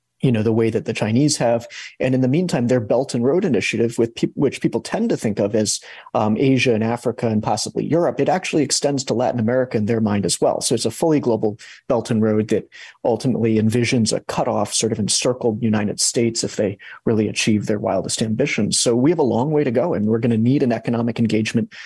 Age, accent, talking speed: 40-59, American, 235 wpm